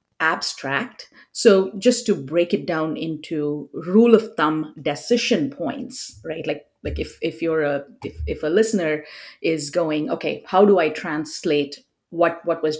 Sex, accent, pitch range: female, Indian, 150-200 Hz